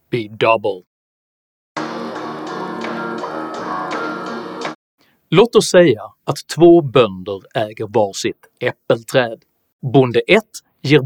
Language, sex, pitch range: Swedish, male, 130-210 Hz